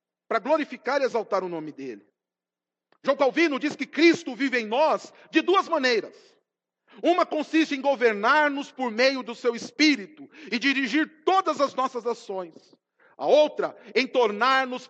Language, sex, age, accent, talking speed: Portuguese, male, 40-59, Brazilian, 150 wpm